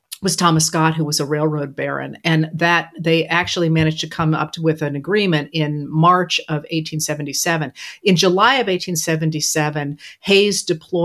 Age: 50-69